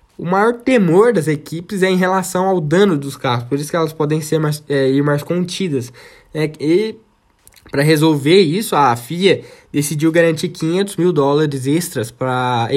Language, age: Portuguese, 10-29